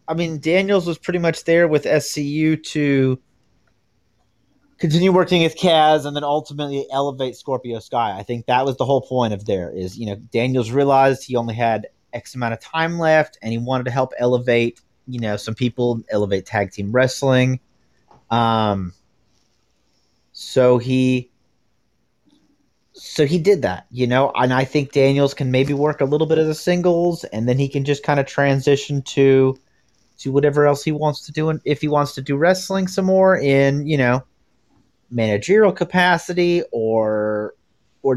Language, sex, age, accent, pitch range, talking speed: English, male, 30-49, American, 120-150 Hz, 175 wpm